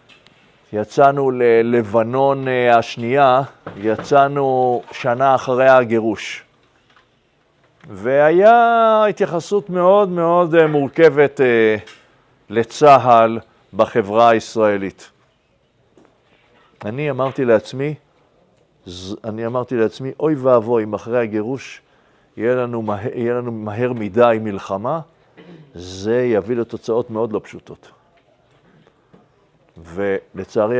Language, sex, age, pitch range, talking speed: Hebrew, male, 50-69, 110-140 Hz, 80 wpm